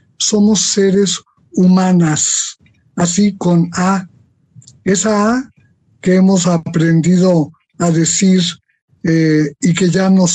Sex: male